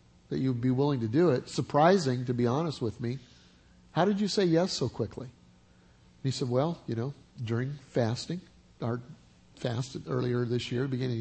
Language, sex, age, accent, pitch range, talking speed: English, male, 50-69, American, 115-170 Hz, 180 wpm